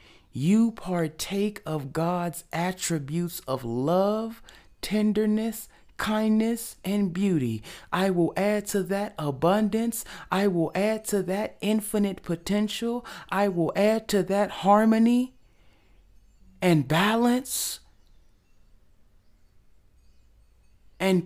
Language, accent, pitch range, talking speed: English, American, 155-215 Hz, 95 wpm